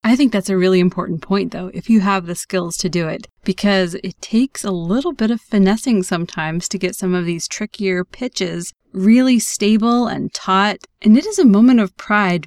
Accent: American